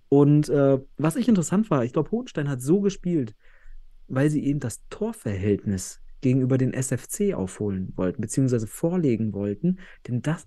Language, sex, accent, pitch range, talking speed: German, male, German, 120-165 Hz, 155 wpm